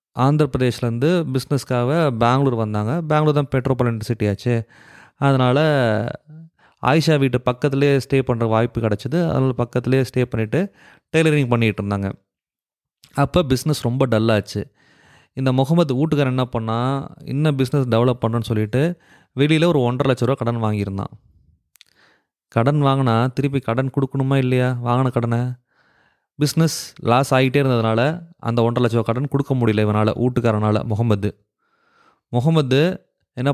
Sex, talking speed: male, 120 wpm